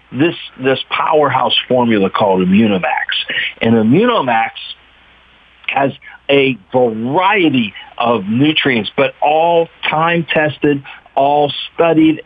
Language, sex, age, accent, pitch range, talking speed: English, male, 50-69, American, 125-170 Hz, 90 wpm